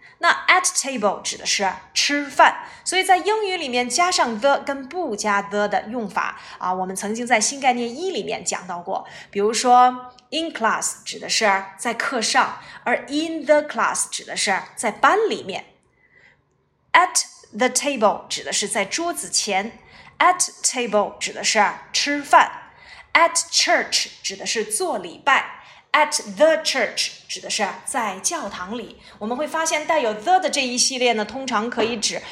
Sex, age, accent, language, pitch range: female, 20-39, native, Chinese, 210-310 Hz